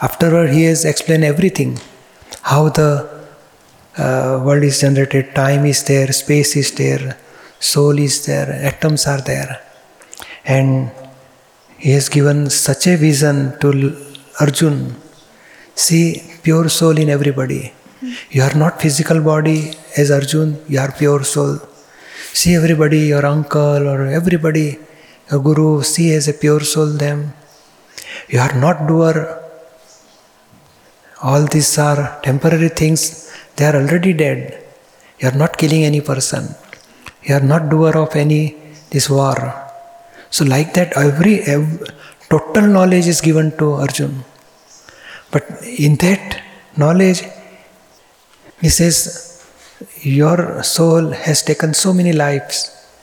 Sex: male